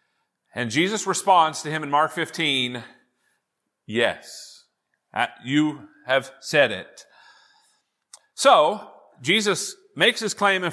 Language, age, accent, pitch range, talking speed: English, 40-59, American, 150-215 Hz, 105 wpm